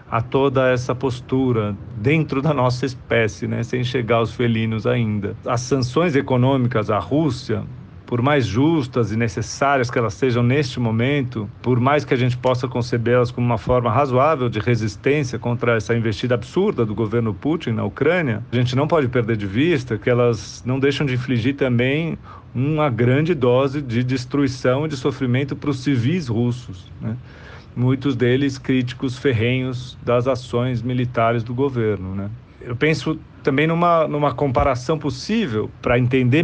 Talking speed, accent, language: 160 wpm, Brazilian, Portuguese